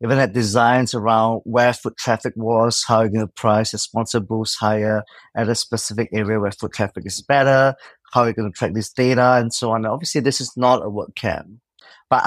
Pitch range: 105-120 Hz